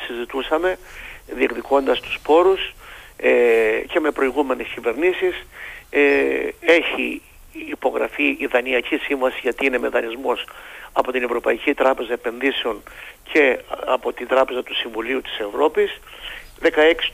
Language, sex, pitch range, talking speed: Greek, male, 140-195 Hz, 115 wpm